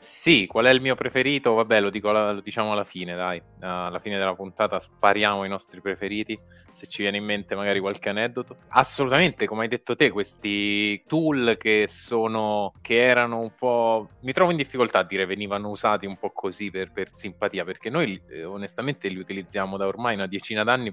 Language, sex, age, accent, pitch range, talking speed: Italian, male, 20-39, native, 95-115 Hz, 200 wpm